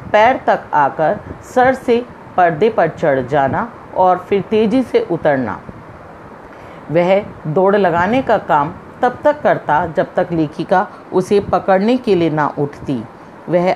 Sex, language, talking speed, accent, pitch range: female, Hindi, 140 wpm, native, 160-225 Hz